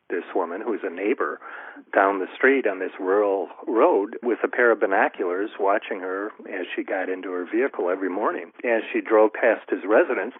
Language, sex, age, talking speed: English, male, 40-59, 195 wpm